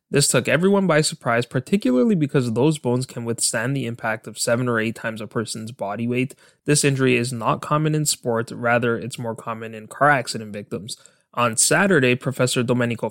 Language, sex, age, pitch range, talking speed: English, male, 20-39, 115-145 Hz, 190 wpm